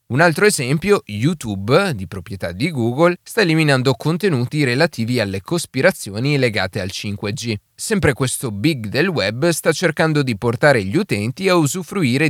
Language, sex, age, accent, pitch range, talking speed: Italian, male, 30-49, native, 110-165 Hz, 145 wpm